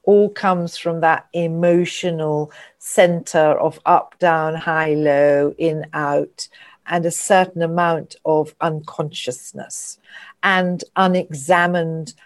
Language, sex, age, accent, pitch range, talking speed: English, female, 50-69, British, 155-185 Hz, 105 wpm